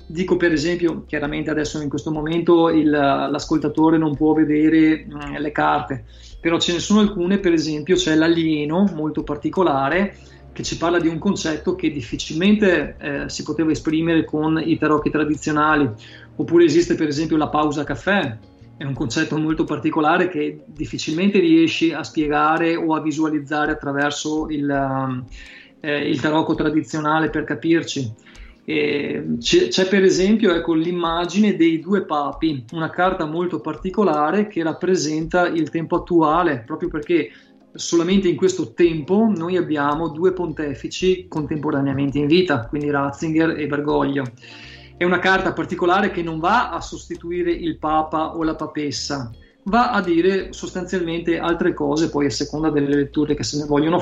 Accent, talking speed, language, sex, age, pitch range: native, 145 wpm, Italian, male, 30-49, 150-175 Hz